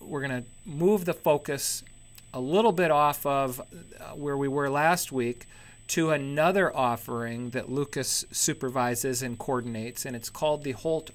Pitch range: 120-160 Hz